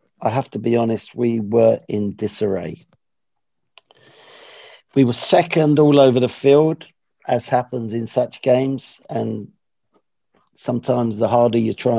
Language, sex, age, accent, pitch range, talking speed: English, male, 50-69, British, 115-145 Hz, 135 wpm